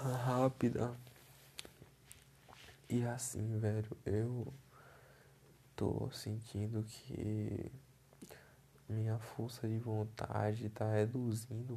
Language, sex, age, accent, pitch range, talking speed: Portuguese, male, 20-39, Brazilian, 110-135 Hz, 70 wpm